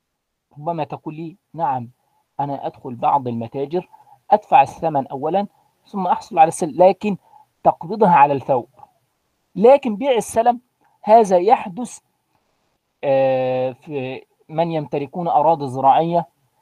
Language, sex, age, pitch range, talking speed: Arabic, male, 40-59, 140-200 Hz, 105 wpm